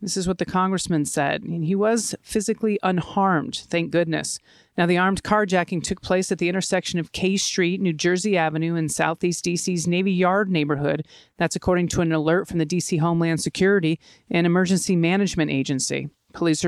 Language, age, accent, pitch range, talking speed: English, 40-59, American, 170-205 Hz, 175 wpm